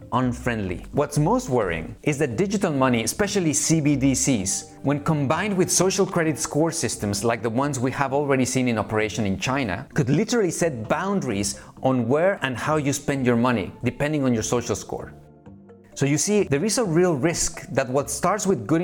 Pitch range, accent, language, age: 120-160 Hz, Mexican, English, 30-49